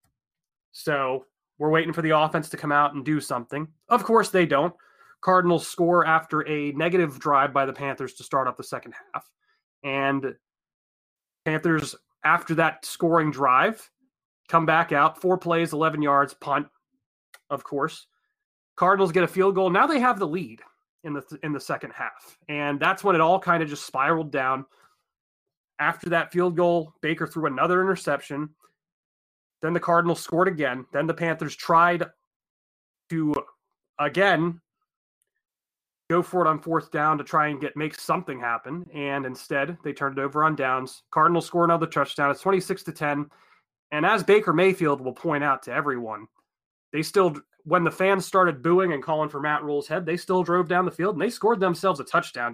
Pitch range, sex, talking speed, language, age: 145-180 Hz, male, 175 wpm, English, 30-49